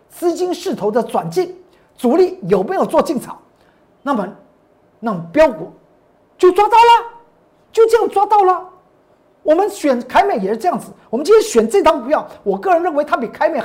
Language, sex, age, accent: Chinese, male, 50-69, native